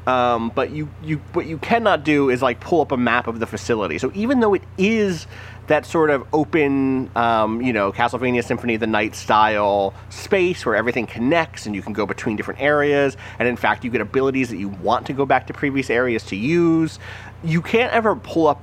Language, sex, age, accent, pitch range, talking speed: English, male, 30-49, American, 105-150 Hz, 215 wpm